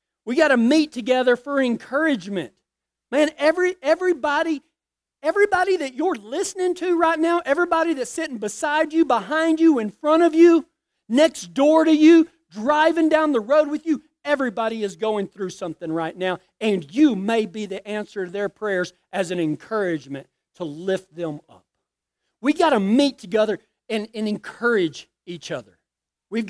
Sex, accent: male, American